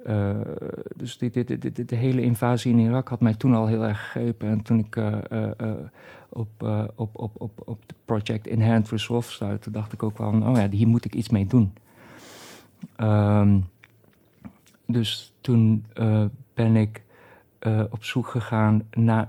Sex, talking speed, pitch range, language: male, 180 wpm, 105-115 Hz, Dutch